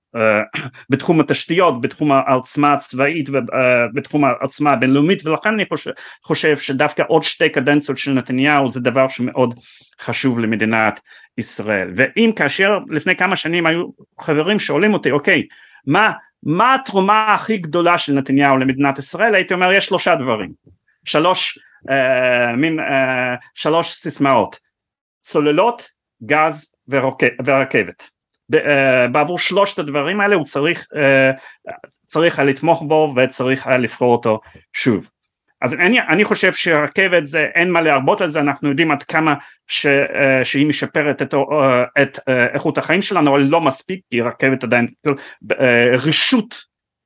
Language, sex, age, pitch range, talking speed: Hebrew, male, 30-49, 130-170 Hz, 135 wpm